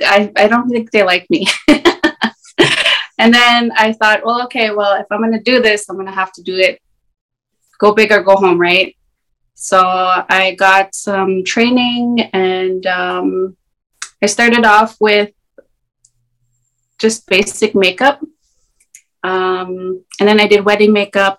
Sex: female